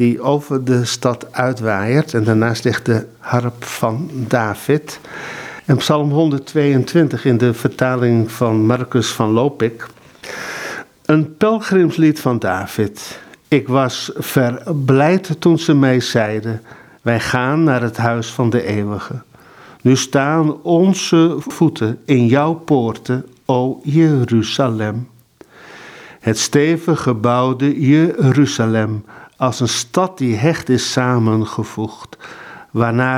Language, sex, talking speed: Dutch, male, 110 wpm